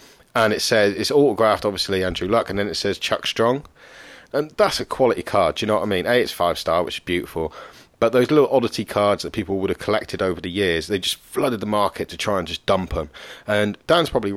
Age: 40-59